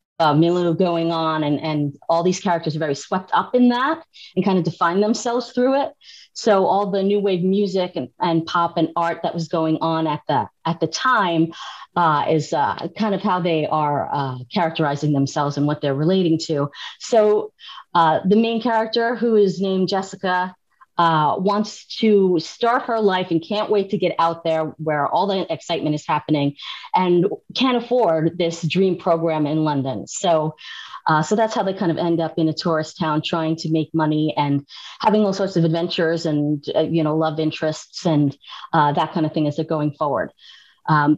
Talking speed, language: 195 wpm, English